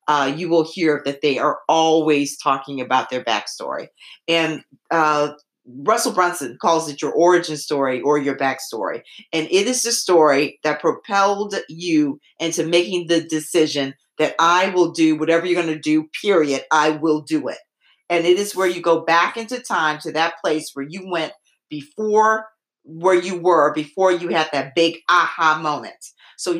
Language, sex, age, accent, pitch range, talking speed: English, female, 50-69, American, 155-195 Hz, 175 wpm